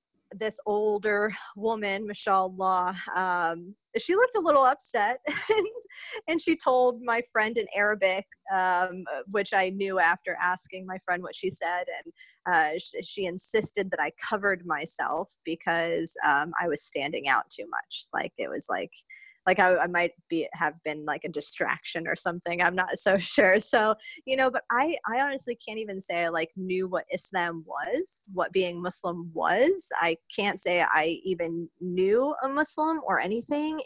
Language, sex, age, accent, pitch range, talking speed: English, female, 20-39, American, 180-240 Hz, 170 wpm